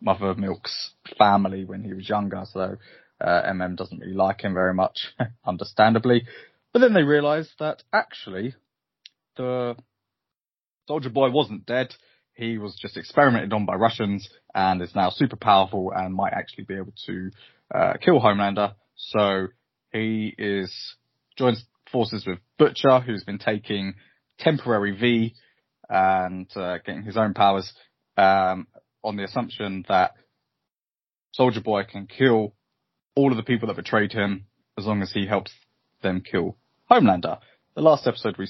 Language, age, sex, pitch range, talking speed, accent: English, 20-39, male, 95-115 Hz, 150 wpm, British